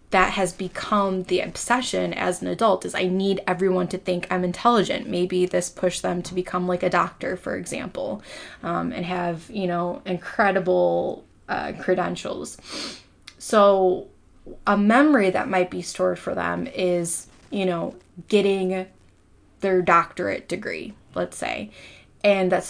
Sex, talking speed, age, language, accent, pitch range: female, 145 wpm, 20-39, English, American, 180-210 Hz